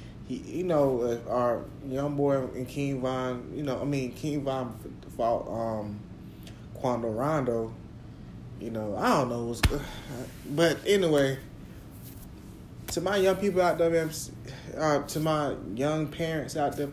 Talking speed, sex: 140 wpm, male